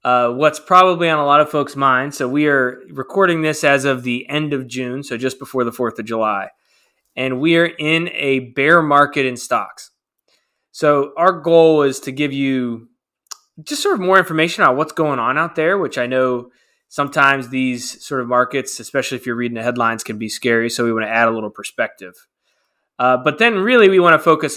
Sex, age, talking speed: male, 20-39, 210 wpm